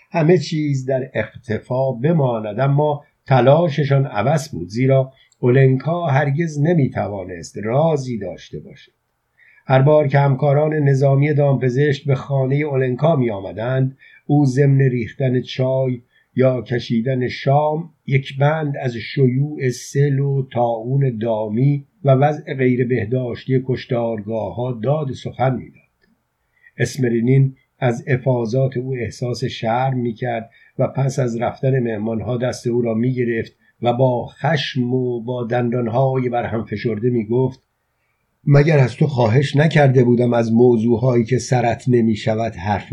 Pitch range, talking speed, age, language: 120-145 Hz, 120 wpm, 50-69, Persian